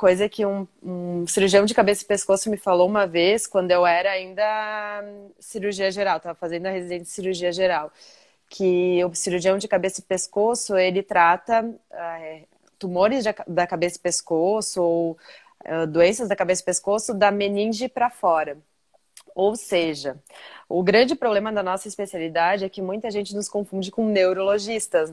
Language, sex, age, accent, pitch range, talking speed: Portuguese, female, 20-39, Brazilian, 160-195 Hz, 160 wpm